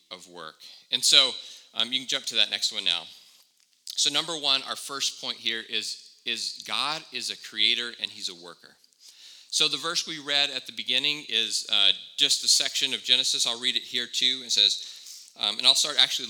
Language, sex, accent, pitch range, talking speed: English, male, American, 105-135 Hz, 210 wpm